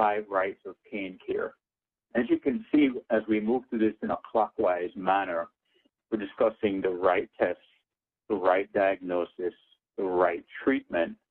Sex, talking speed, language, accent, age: male, 155 wpm, English, American, 60-79